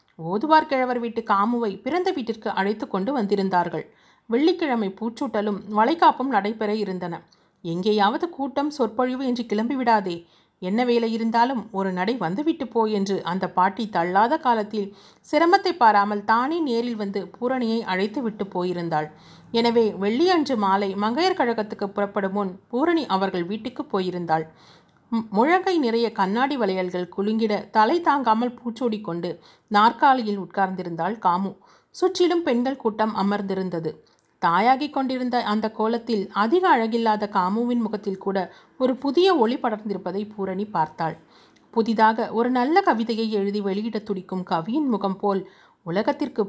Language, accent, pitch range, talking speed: Tamil, native, 195-245 Hz, 115 wpm